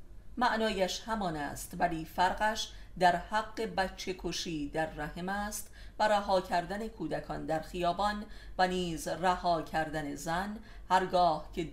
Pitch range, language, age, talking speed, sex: 160-195 Hz, Persian, 40-59, 130 wpm, female